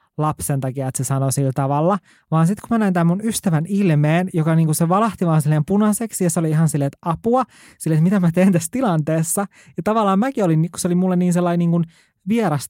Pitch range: 150-190 Hz